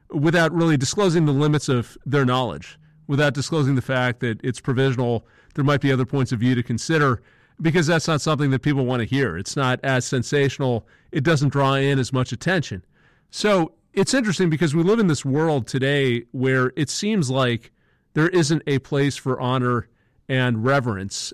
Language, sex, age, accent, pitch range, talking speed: English, male, 40-59, American, 125-150 Hz, 185 wpm